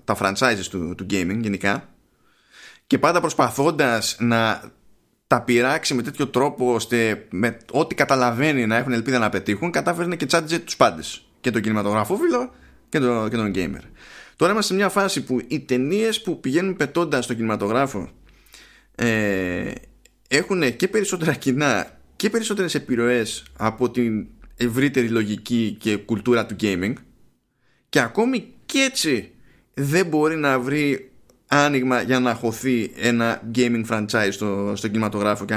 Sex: male